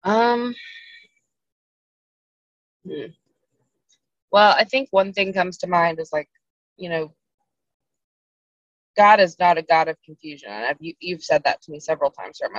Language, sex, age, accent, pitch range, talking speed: English, female, 20-39, American, 150-180 Hz, 150 wpm